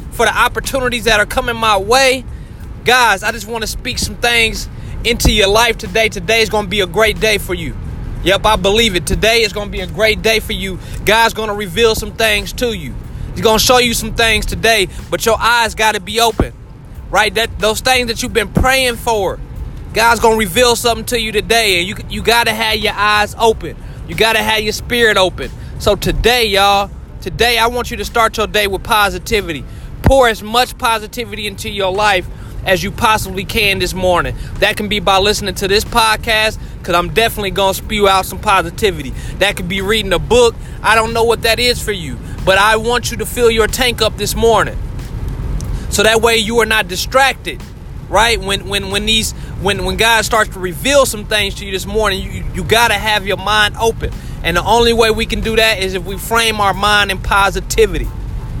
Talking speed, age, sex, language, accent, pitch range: 220 wpm, 20-39, male, English, American, 200-230 Hz